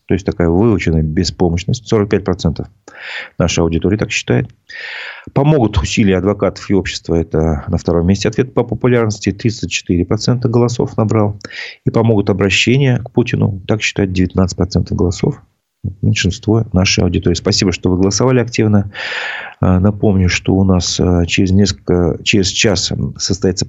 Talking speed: 130 wpm